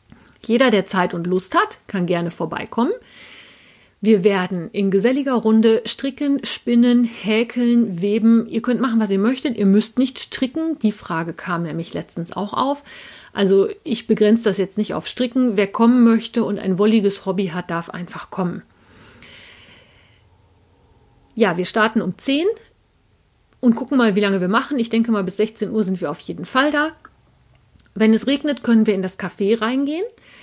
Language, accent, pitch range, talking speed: German, German, 190-240 Hz, 170 wpm